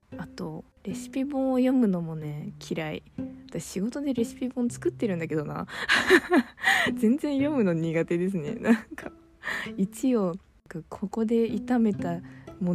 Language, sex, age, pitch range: Japanese, female, 20-39, 160-225 Hz